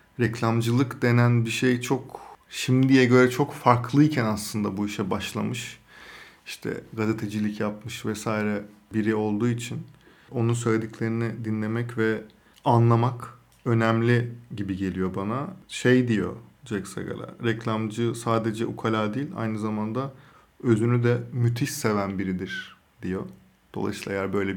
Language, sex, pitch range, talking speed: Turkish, male, 110-125 Hz, 115 wpm